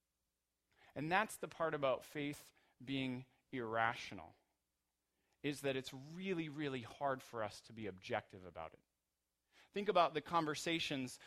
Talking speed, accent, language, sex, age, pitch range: 135 wpm, American, English, male, 30-49, 125-160 Hz